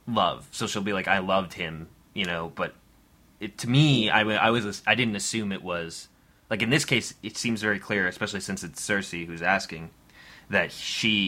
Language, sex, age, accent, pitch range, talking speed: English, male, 20-39, American, 85-110 Hz, 200 wpm